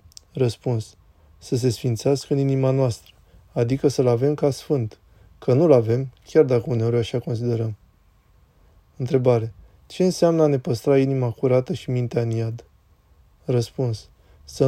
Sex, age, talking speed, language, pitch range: male, 20-39, 135 wpm, Romanian, 110-140 Hz